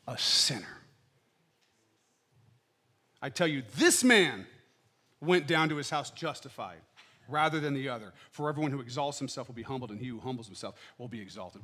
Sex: male